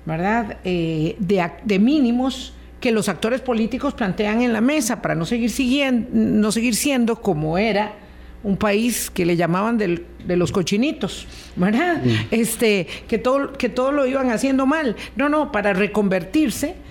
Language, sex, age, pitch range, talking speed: Spanish, female, 50-69, 185-245 Hz, 155 wpm